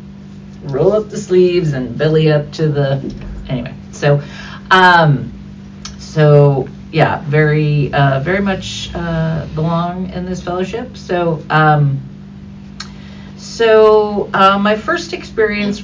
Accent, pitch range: American, 145-170 Hz